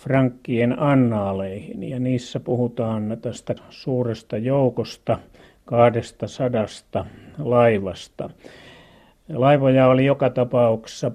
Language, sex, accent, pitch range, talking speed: Finnish, male, native, 115-130 Hz, 75 wpm